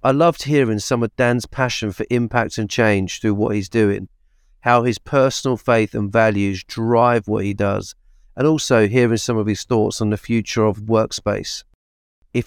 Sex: male